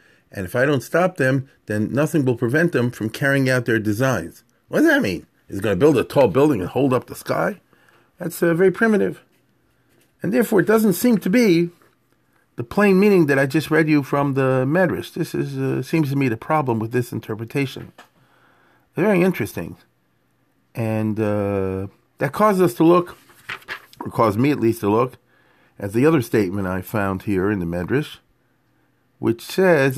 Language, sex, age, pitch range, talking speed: English, male, 40-59, 105-160 Hz, 190 wpm